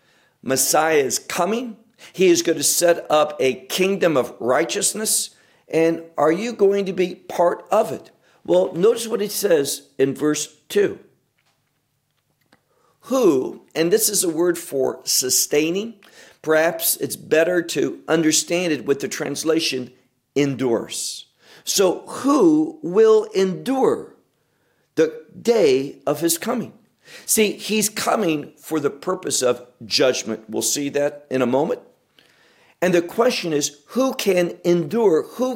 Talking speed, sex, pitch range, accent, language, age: 135 wpm, male, 145-200 Hz, American, English, 50-69